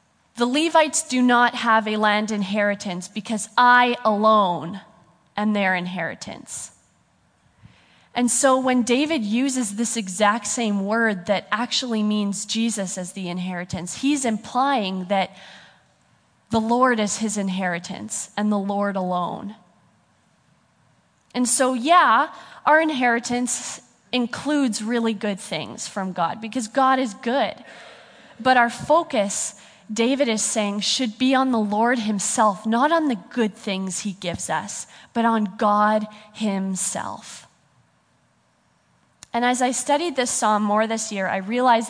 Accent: American